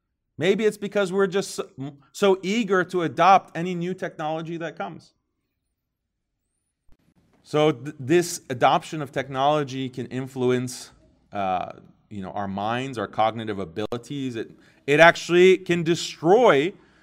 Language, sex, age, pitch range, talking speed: English, male, 30-49, 155-200 Hz, 115 wpm